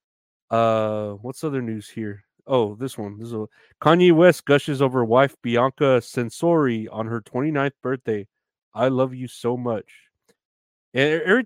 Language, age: English, 30-49